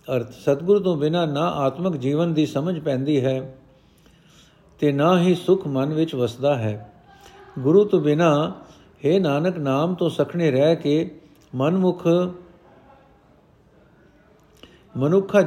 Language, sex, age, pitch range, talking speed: Punjabi, male, 50-69, 135-170 Hz, 120 wpm